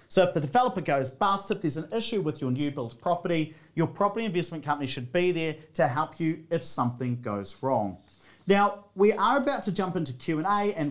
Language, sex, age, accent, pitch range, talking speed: English, male, 40-59, Australian, 140-200 Hz, 210 wpm